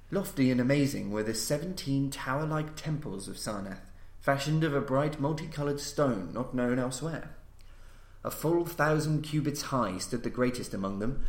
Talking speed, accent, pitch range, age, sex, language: 160 wpm, British, 110-145 Hz, 30-49, male, English